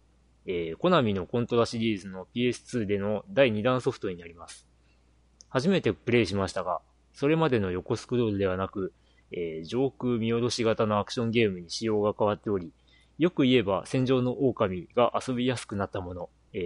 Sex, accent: male, native